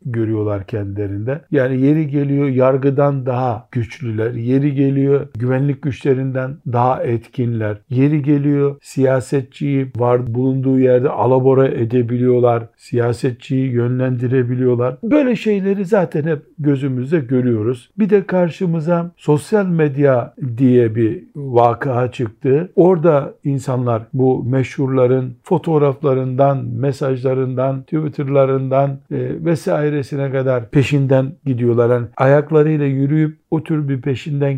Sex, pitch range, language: male, 125-150 Hz, Turkish